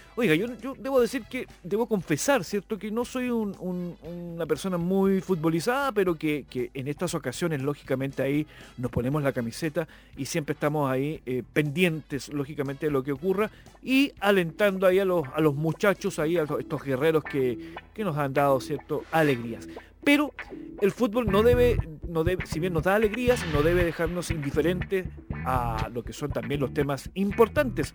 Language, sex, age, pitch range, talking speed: Spanish, male, 40-59, 145-195 Hz, 180 wpm